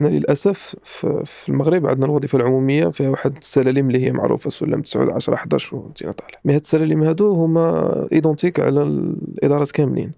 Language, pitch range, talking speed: Arabic, 130-150 Hz, 155 wpm